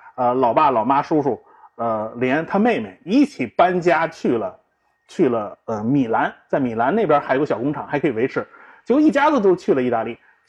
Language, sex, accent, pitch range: Chinese, male, native, 180-275 Hz